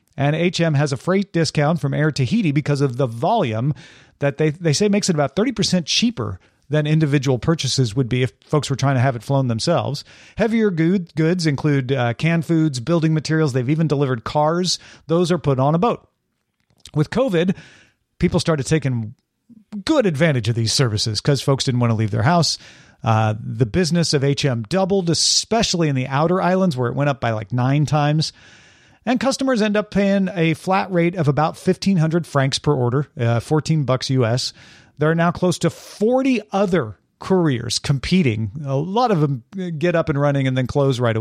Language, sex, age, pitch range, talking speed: English, male, 40-59, 130-175 Hz, 190 wpm